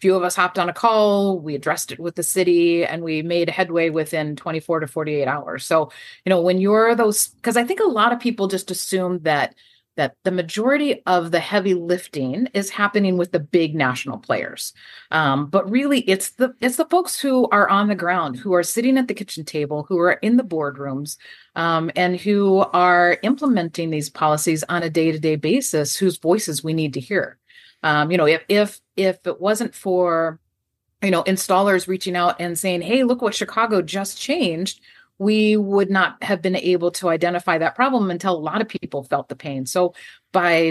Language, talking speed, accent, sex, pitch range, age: English, 200 wpm, American, female, 160-205 Hz, 30-49